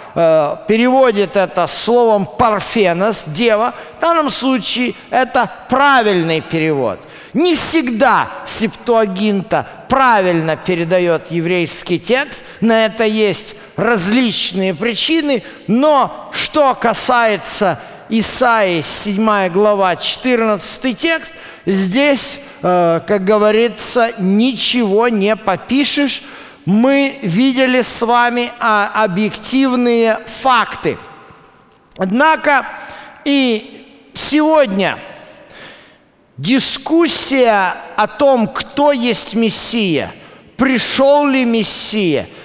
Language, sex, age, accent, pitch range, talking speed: Russian, male, 50-69, native, 205-255 Hz, 80 wpm